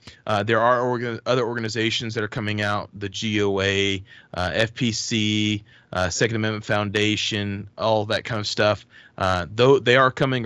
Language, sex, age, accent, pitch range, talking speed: English, male, 30-49, American, 105-120 Hz, 155 wpm